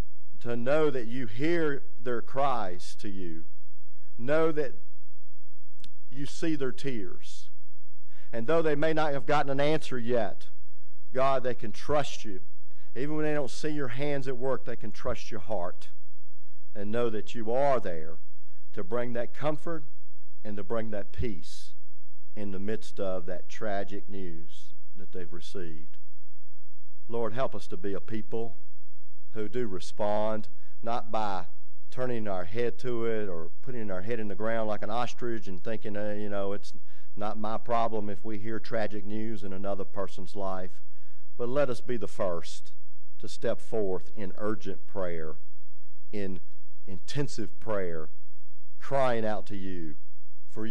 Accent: American